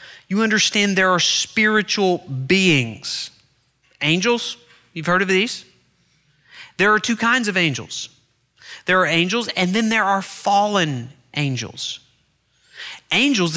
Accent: American